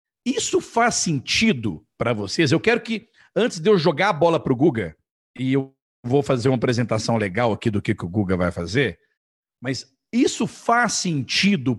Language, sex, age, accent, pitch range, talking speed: Portuguese, male, 50-69, Brazilian, 135-220 Hz, 185 wpm